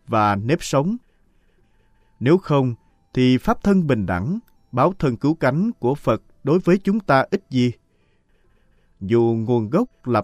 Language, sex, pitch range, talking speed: Vietnamese, male, 100-160 Hz, 150 wpm